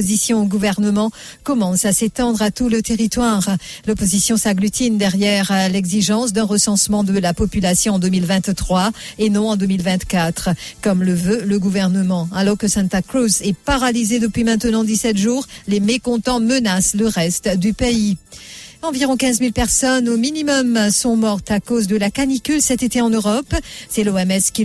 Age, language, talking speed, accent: 50-69, English, 165 wpm, French